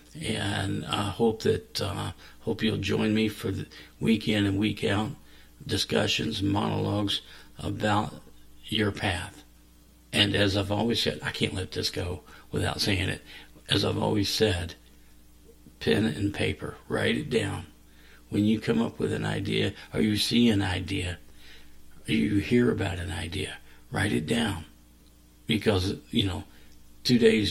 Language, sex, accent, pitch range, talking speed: English, male, American, 75-105 Hz, 150 wpm